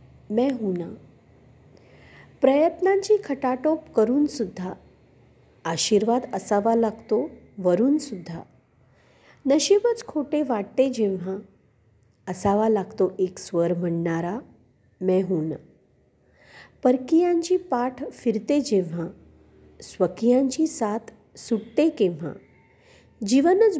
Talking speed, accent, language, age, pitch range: 75 wpm, native, Marathi, 50-69, 180-270 Hz